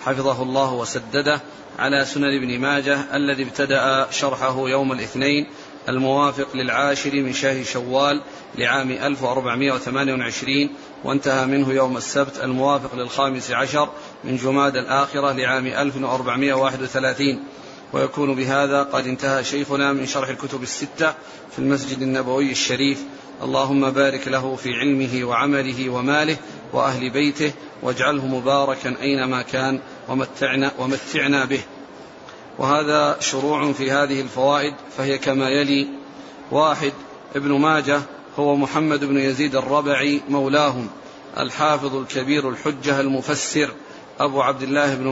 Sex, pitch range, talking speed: male, 135-145 Hz, 115 wpm